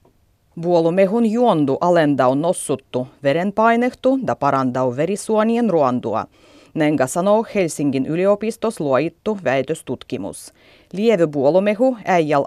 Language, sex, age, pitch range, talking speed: Finnish, female, 30-49, 135-205 Hz, 85 wpm